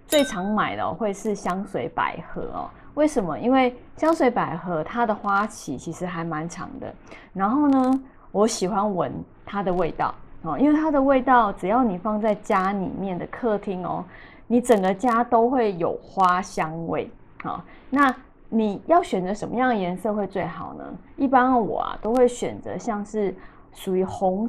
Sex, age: female, 20-39